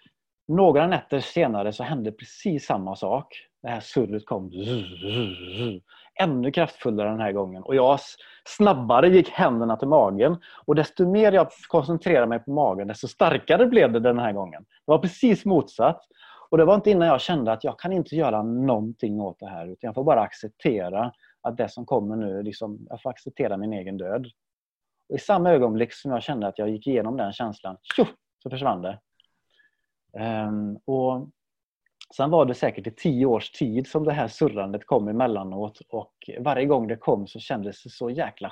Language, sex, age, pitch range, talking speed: English, male, 30-49, 105-145 Hz, 180 wpm